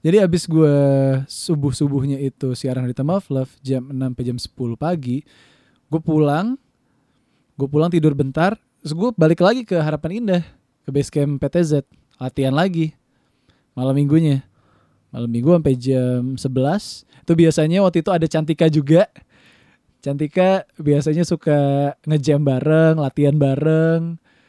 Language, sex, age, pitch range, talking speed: English, male, 20-39, 135-175 Hz, 130 wpm